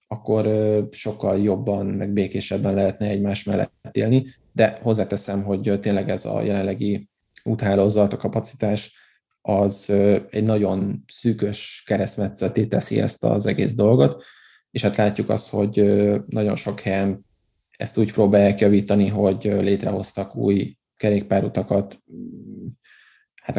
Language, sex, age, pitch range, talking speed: Hungarian, male, 20-39, 100-110 Hz, 115 wpm